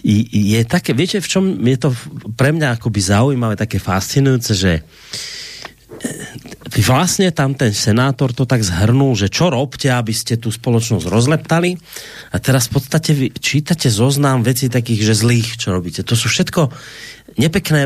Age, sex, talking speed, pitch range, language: 30-49, male, 160 wpm, 110-150 Hz, Slovak